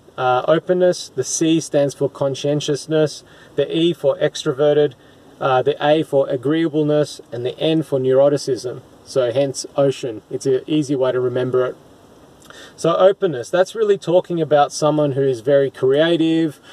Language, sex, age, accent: English, male, 20-39, Australian